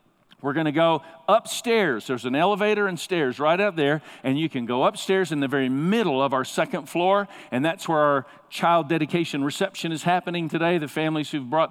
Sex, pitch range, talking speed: male, 140-180 Hz, 205 wpm